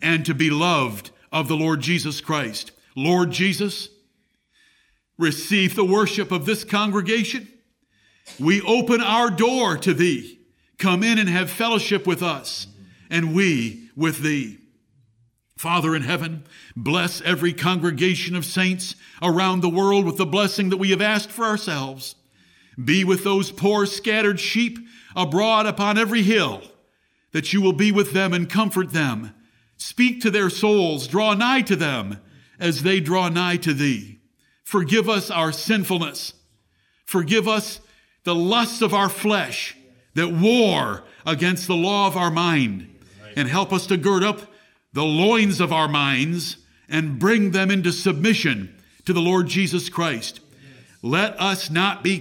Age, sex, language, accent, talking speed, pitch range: 60-79, male, English, American, 150 wpm, 160-210 Hz